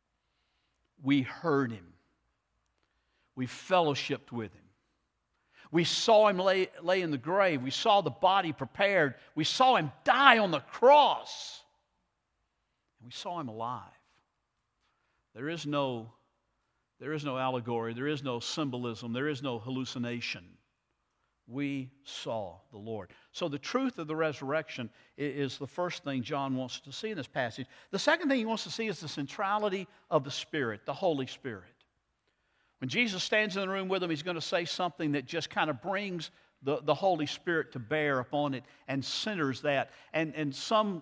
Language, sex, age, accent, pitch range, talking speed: English, male, 60-79, American, 130-180 Hz, 170 wpm